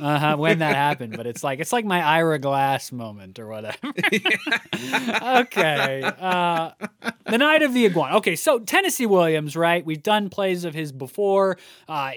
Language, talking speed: English, 175 wpm